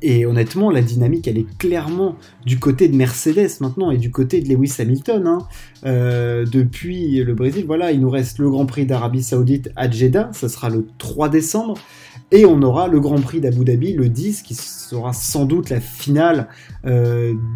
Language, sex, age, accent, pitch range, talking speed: French, male, 20-39, French, 120-150 Hz, 190 wpm